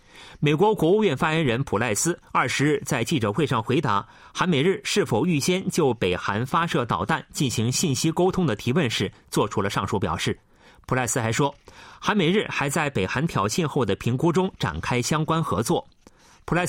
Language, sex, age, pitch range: Chinese, male, 30-49, 120-170 Hz